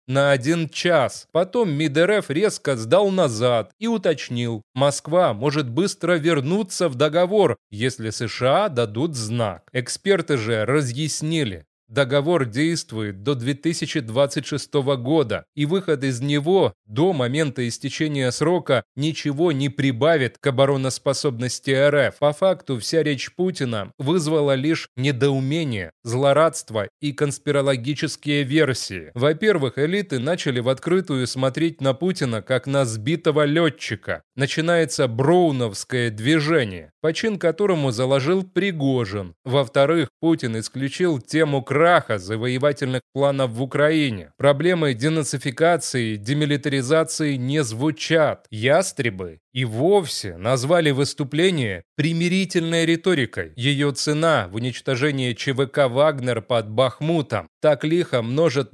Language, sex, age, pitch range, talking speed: Russian, male, 30-49, 130-160 Hz, 105 wpm